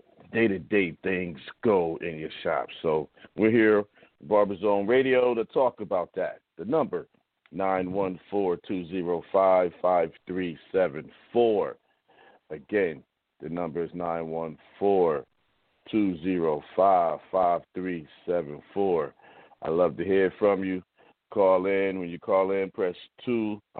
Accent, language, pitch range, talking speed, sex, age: American, English, 85-110 Hz, 100 wpm, male, 50-69